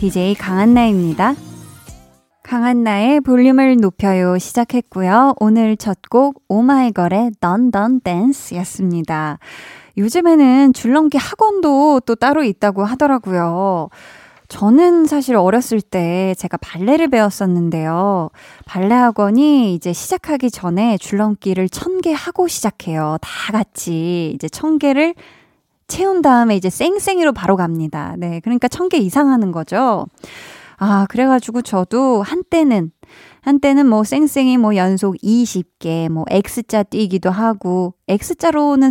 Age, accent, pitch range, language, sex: 20-39, native, 185-270 Hz, Korean, female